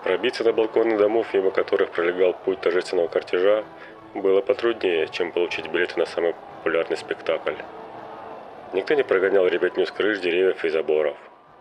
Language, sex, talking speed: Russian, male, 145 wpm